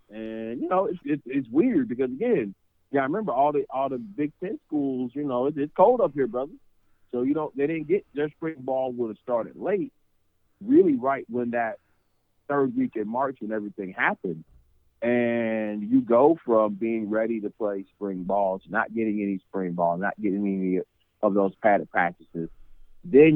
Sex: male